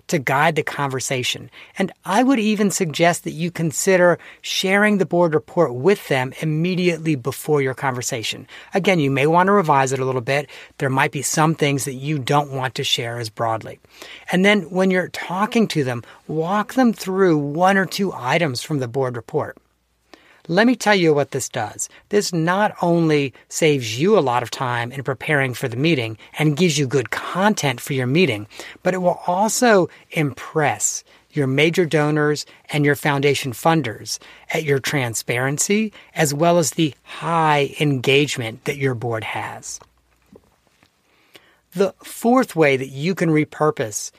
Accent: American